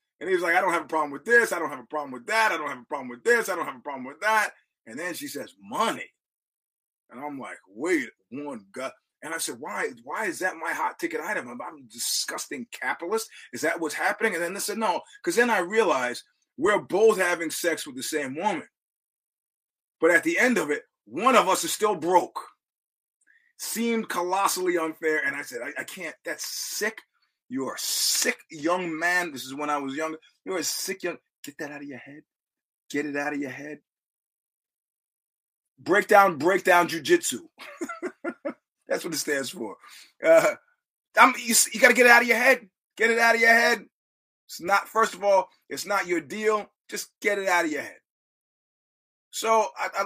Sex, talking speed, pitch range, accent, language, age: male, 210 wpm, 165-240 Hz, American, English, 30-49